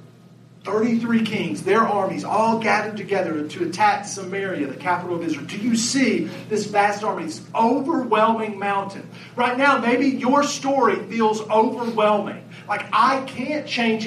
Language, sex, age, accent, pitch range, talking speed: English, male, 40-59, American, 190-245 Hz, 145 wpm